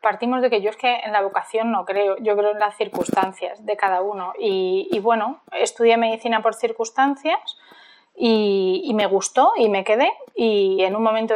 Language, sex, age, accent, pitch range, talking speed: Spanish, female, 20-39, Spanish, 210-255 Hz, 195 wpm